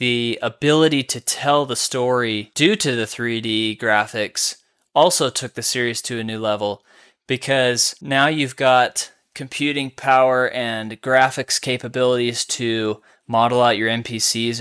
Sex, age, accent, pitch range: male, 20-39, American, 110-130 Hz